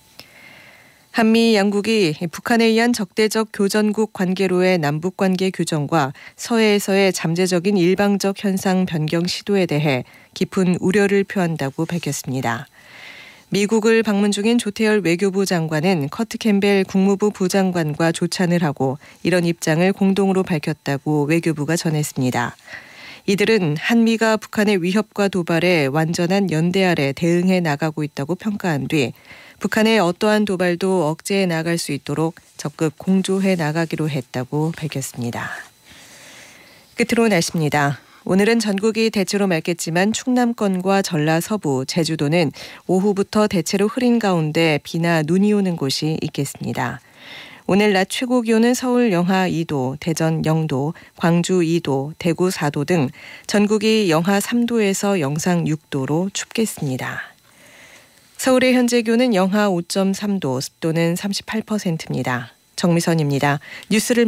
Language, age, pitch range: Korean, 40-59, 160-205 Hz